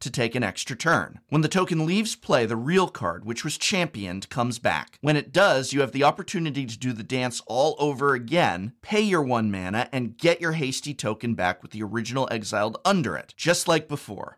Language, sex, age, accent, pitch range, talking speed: English, male, 30-49, American, 115-155 Hz, 215 wpm